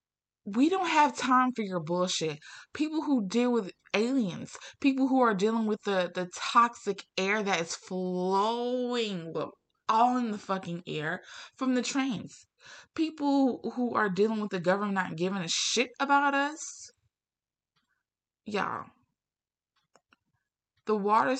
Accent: American